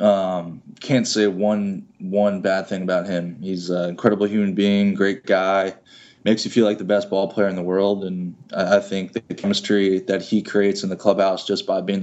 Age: 20-39